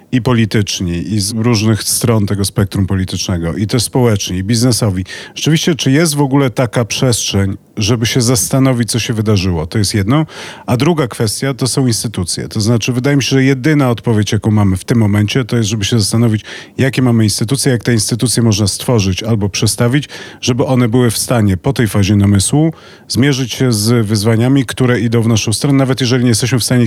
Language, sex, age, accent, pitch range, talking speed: Polish, male, 40-59, native, 105-130 Hz, 195 wpm